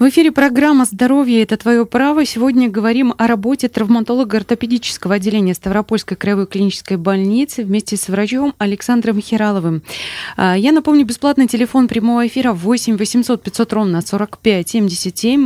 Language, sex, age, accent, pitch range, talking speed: Russian, female, 20-39, native, 175-235 Hz, 130 wpm